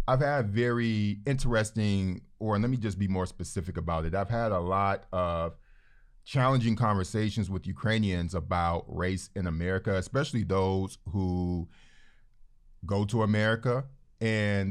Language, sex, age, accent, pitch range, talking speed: English, male, 30-49, American, 95-125 Hz, 135 wpm